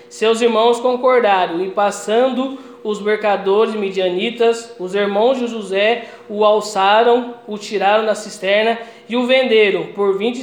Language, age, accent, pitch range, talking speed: Portuguese, 20-39, Brazilian, 195-230 Hz, 130 wpm